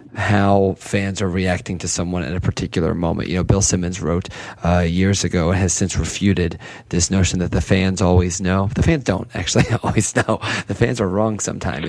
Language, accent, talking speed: English, American, 200 wpm